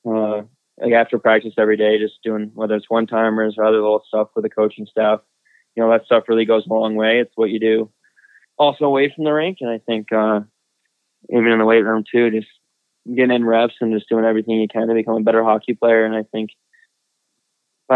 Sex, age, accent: male, 20-39, American